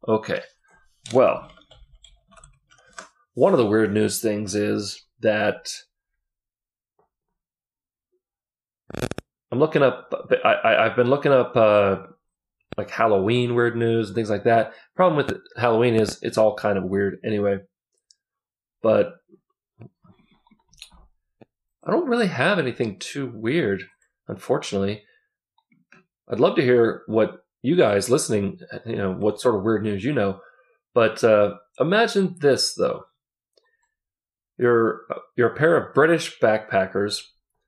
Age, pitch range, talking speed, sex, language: 30-49, 105-165 Hz, 120 wpm, male, English